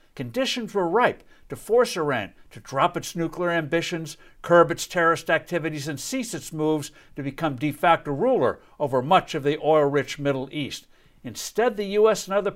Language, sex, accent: English, male, American